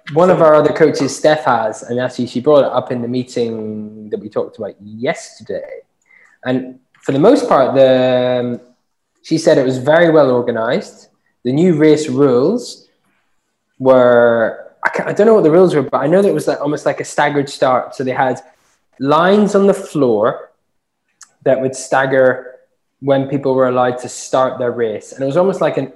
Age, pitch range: 20-39, 125-150 Hz